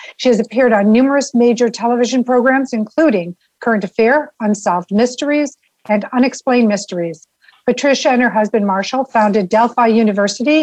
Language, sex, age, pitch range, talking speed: English, female, 60-79, 210-255 Hz, 135 wpm